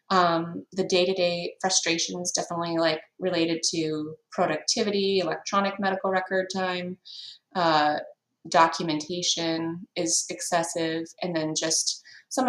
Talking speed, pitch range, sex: 100 wpm, 170-205 Hz, female